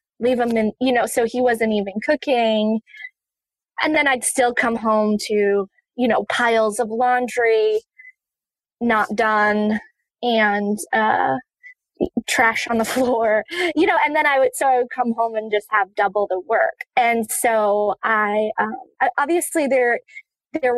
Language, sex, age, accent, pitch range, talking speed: English, female, 20-39, American, 220-270 Hz, 155 wpm